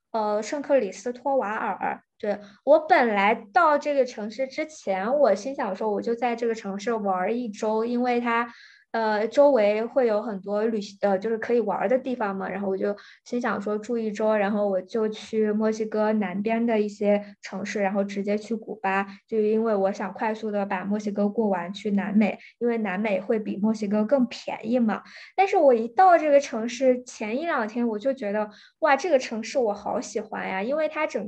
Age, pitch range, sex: 20-39, 205-250 Hz, female